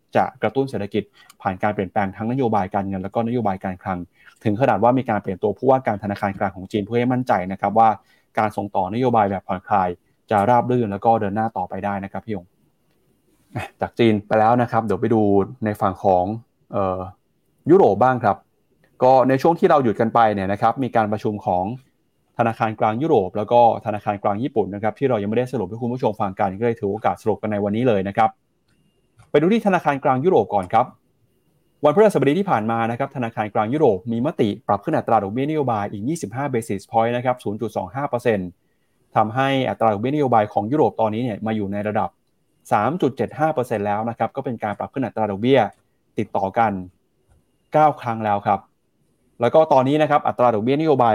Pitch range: 100-125 Hz